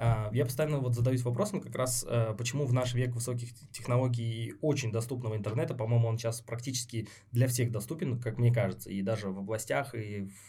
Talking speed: 190 wpm